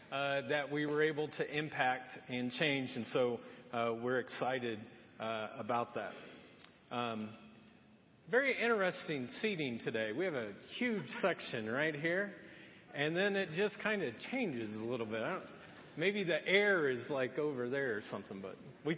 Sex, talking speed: male, 160 wpm